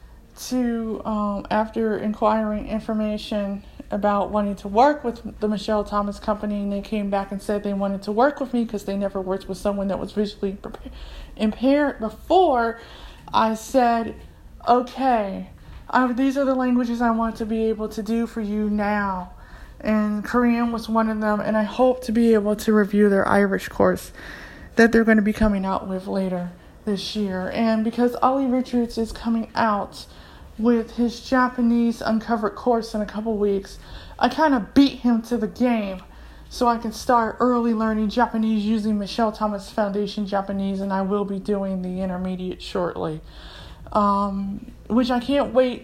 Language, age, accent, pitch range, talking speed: English, 20-39, American, 200-235 Hz, 175 wpm